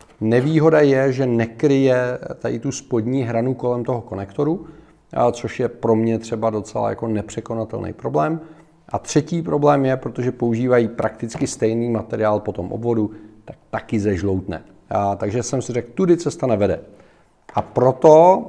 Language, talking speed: Czech, 145 wpm